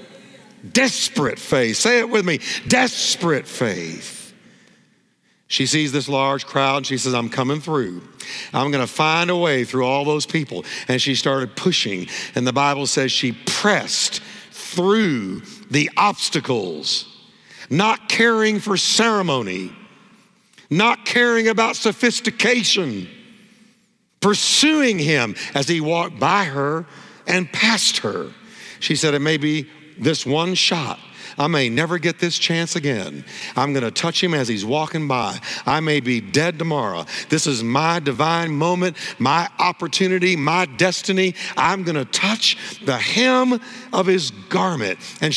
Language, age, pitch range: English, 60-79, 145-215 Hz